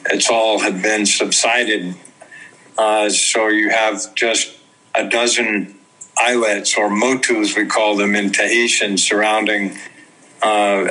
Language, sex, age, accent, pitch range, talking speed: English, male, 50-69, American, 105-120 Hz, 120 wpm